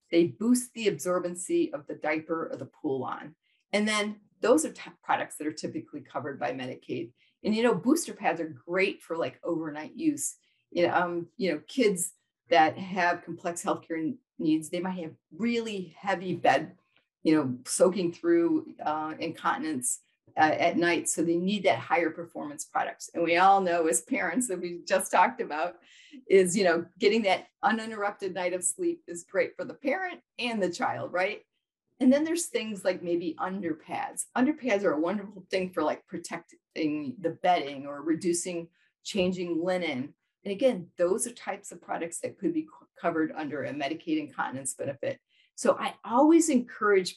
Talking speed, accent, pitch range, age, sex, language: 180 wpm, American, 170-240 Hz, 40-59, female, English